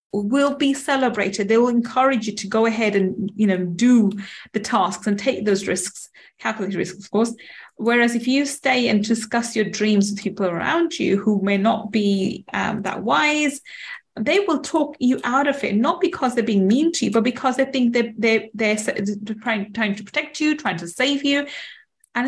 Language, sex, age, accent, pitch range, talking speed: English, female, 30-49, British, 205-265 Hz, 205 wpm